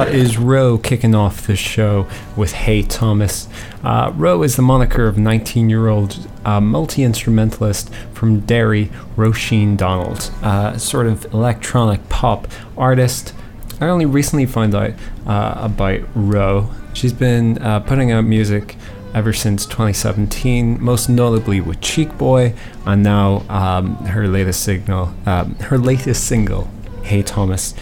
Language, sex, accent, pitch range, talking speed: English, male, American, 100-120 Hz, 140 wpm